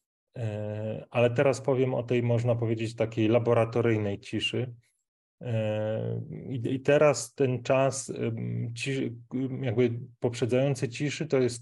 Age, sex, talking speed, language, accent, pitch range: 20-39, male, 100 wpm, Polish, native, 110-125 Hz